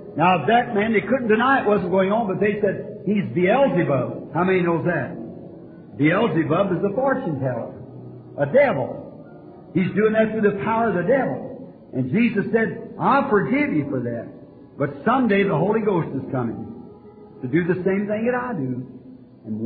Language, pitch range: English, 165-210 Hz